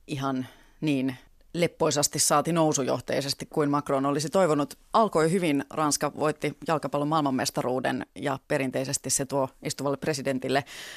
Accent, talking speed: native, 115 wpm